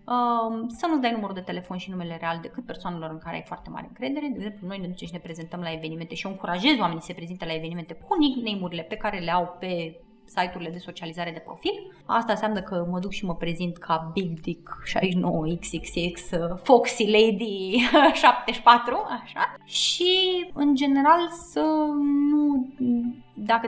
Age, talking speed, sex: 20-39, 170 wpm, female